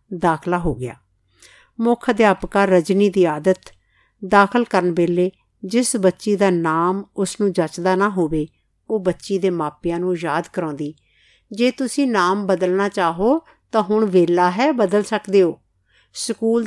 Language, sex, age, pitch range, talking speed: Punjabi, female, 50-69, 170-205 Hz, 145 wpm